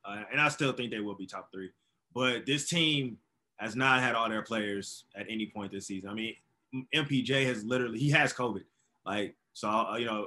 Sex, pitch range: male, 110-130 Hz